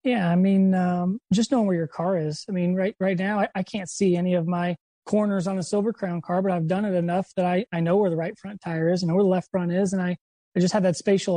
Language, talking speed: English, 295 wpm